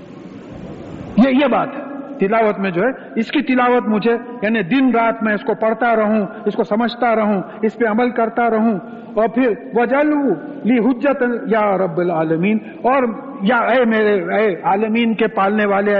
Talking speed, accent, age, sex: 160 wpm, Indian, 50-69, male